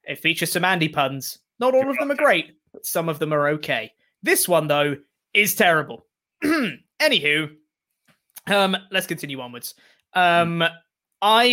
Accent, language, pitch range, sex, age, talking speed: British, English, 145-195 Hz, male, 20-39, 150 wpm